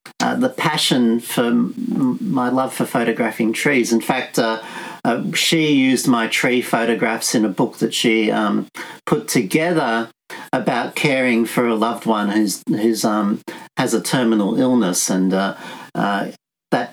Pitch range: 110-165 Hz